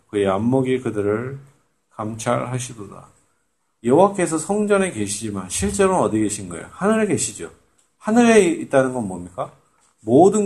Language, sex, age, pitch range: Korean, male, 40-59, 105-165 Hz